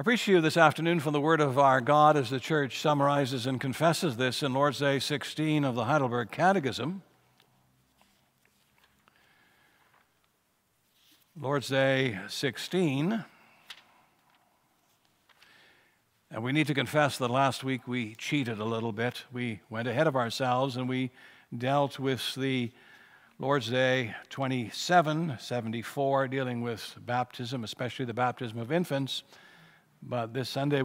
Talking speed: 130 wpm